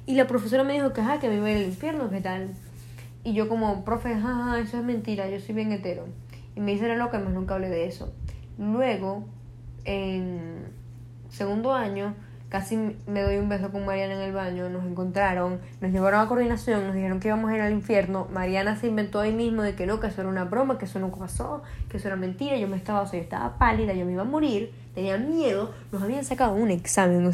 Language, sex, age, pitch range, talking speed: Spanish, female, 10-29, 180-225 Hz, 235 wpm